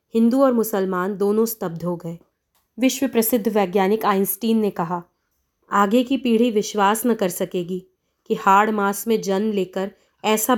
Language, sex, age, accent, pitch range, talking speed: Hindi, female, 30-49, native, 190-230 Hz, 155 wpm